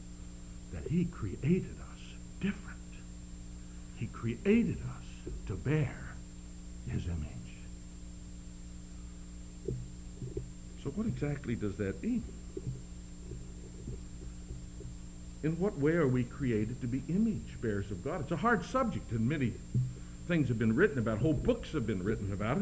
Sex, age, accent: male, 60-79, American